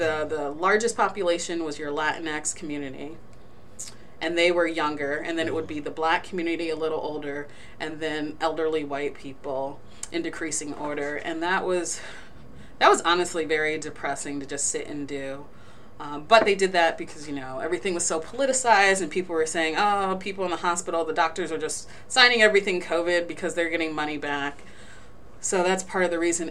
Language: English